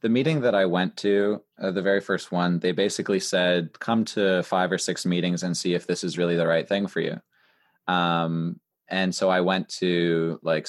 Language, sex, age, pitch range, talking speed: English, male, 20-39, 85-95 Hz, 215 wpm